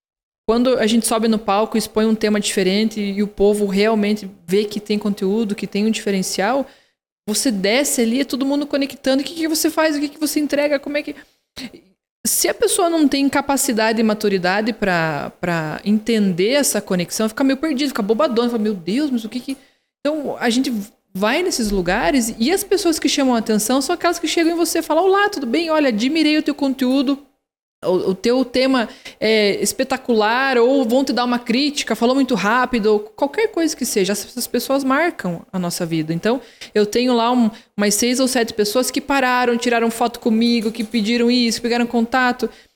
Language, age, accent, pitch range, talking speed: Portuguese, 20-39, Brazilian, 215-275 Hz, 200 wpm